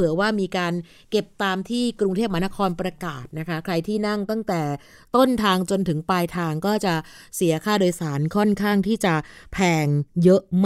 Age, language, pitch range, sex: 20-39, Thai, 180-220 Hz, female